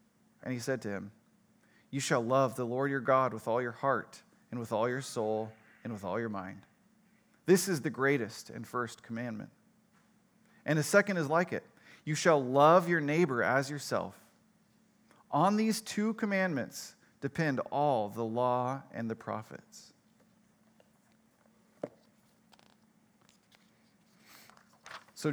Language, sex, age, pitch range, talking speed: English, male, 30-49, 130-195 Hz, 135 wpm